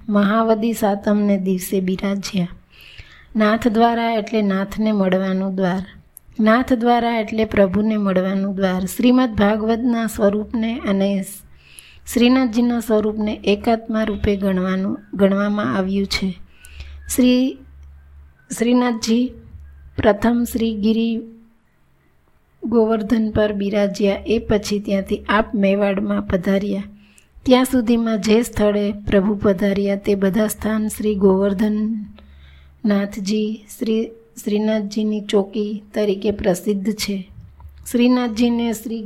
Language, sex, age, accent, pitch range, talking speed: Gujarati, female, 20-39, native, 200-225 Hz, 90 wpm